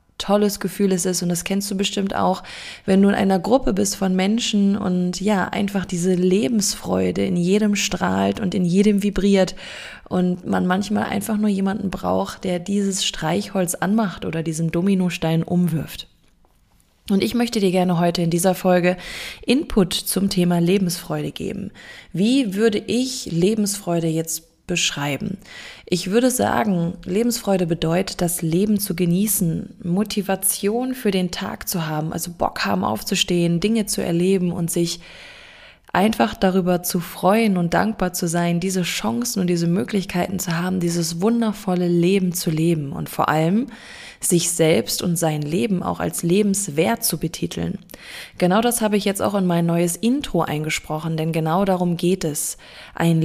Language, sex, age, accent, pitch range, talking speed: German, female, 20-39, German, 165-200 Hz, 155 wpm